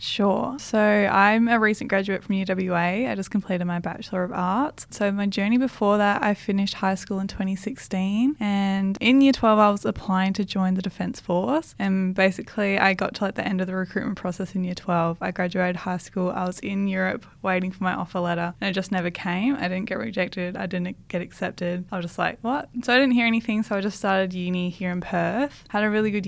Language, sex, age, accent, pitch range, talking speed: English, female, 10-29, Australian, 180-210 Hz, 230 wpm